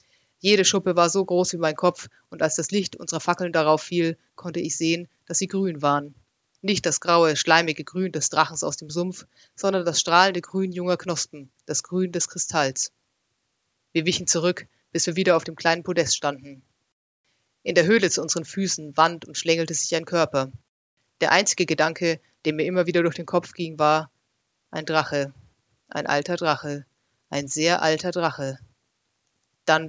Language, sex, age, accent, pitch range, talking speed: German, female, 30-49, German, 145-175 Hz, 175 wpm